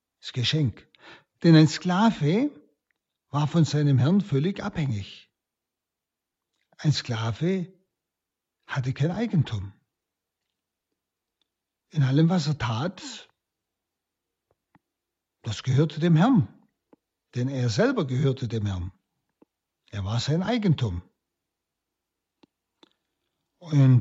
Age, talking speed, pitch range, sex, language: 60-79, 90 wpm, 125-190 Hz, male, German